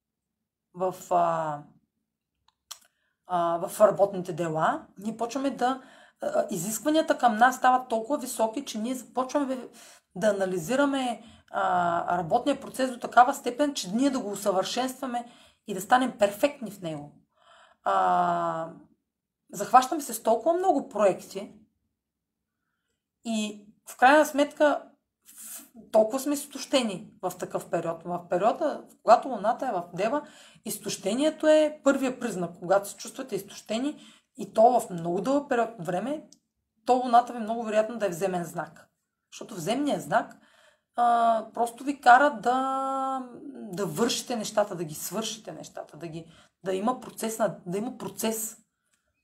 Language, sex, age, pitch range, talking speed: Bulgarian, female, 30-49, 185-260 Hz, 130 wpm